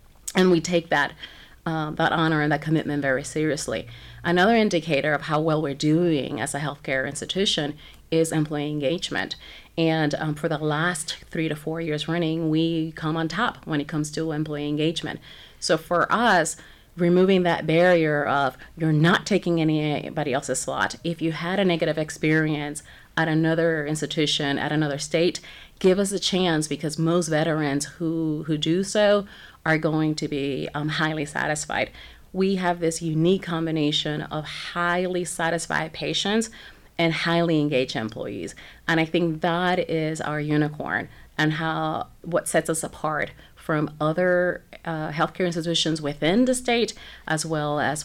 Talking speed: 155 wpm